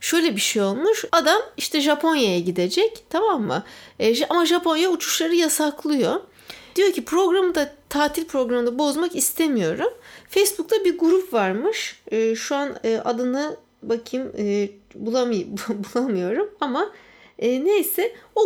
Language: Turkish